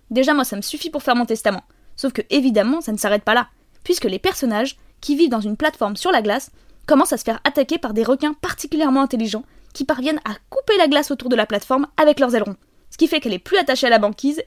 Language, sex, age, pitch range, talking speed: French, female, 20-39, 240-320 Hz, 255 wpm